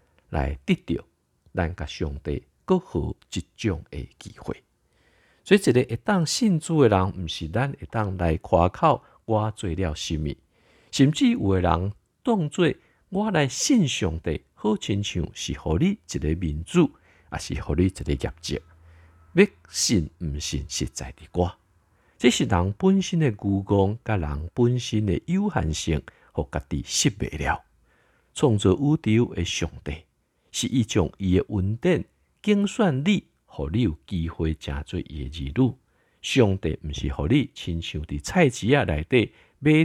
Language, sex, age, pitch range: Chinese, male, 50-69, 80-120 Hz